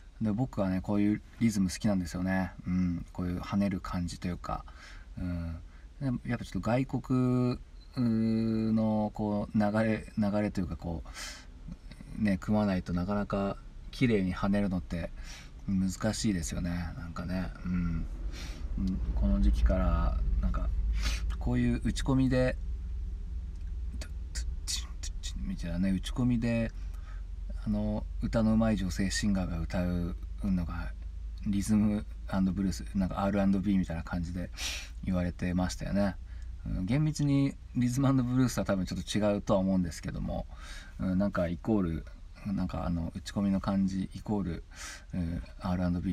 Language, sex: Japanese, male